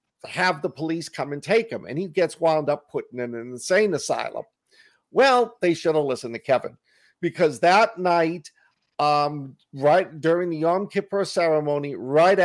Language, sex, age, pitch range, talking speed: English, male, 50-69, 145-190 Hz, 170 wpm